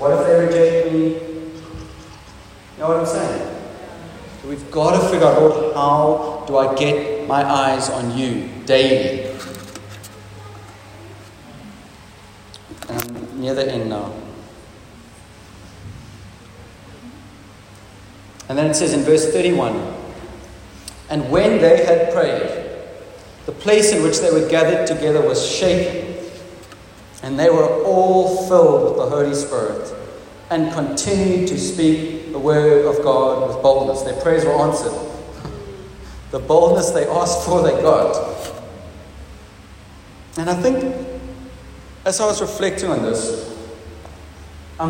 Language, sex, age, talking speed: English, male, 40-59, 125 wpm